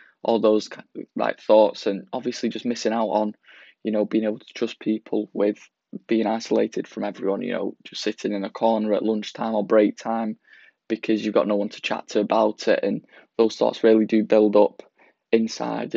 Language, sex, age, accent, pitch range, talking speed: English, male, 20-39, British, 105-115 Hz, 200 wpm